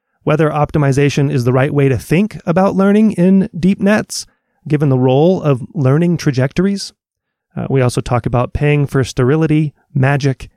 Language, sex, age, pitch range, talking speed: English, male, 30-49, 130-165 Hz, 160 wpm